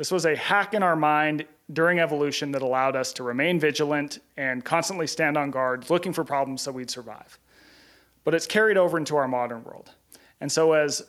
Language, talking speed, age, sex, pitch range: English, 200 wpm, 30-49, male, 130-170 Hz